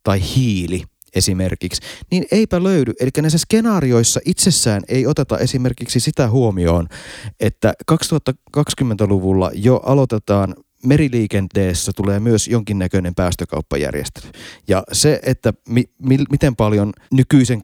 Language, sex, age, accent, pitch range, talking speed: Finnish, male, 30-49, native, 95-130 Hz, 100 wpm